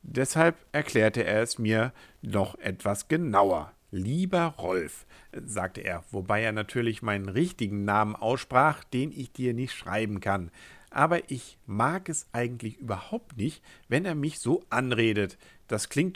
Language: German